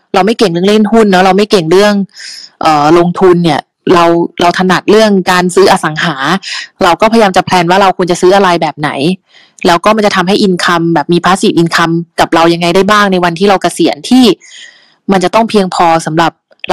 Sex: female